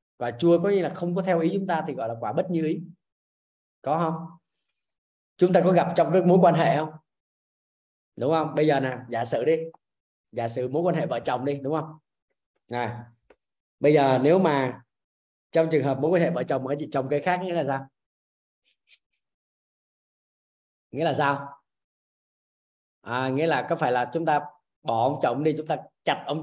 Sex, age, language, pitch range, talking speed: male, 20-39, Vietnamese, 120-165 Hz, 200 wpm